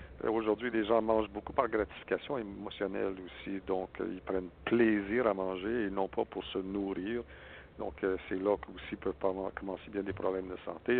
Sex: male